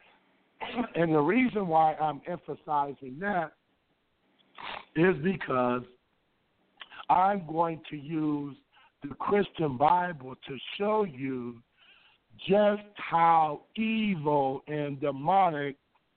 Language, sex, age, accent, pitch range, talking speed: English, male, 60-79, American, 150-200 Hz, 90 wpm